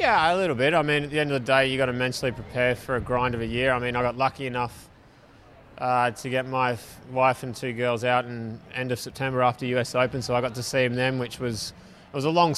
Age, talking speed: 20-39, 275 wpm